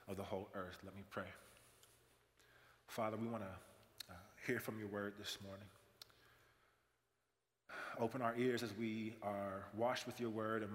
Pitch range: 105-130 Hz